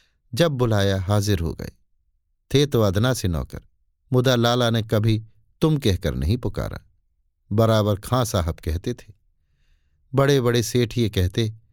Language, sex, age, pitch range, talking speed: Hindi, male, 50-69, 90-125 Hz, 145 wpm